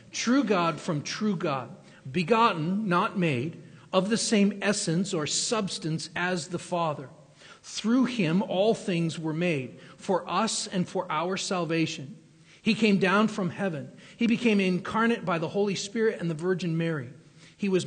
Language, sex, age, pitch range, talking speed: English, male, 40-59, 160-200 Hz, 160 wpm